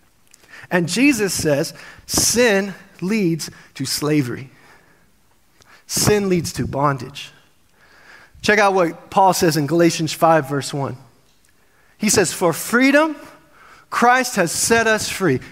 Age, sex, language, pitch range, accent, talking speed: 30-49, male, English, 175-265 Hz, American, 115 wpm